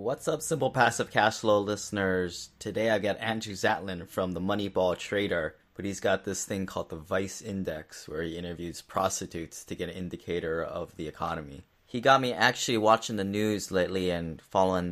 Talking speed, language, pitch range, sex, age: 185 wpm, English, 90-115 Hz, male, 20-39